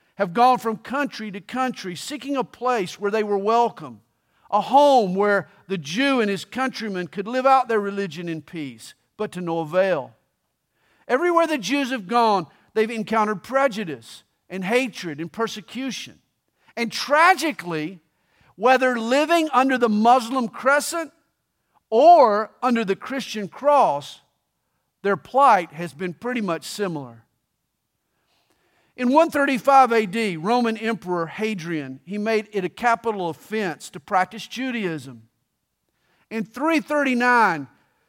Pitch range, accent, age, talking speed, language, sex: 190-250 Hz, American, 50-69, 130 wpm, English, male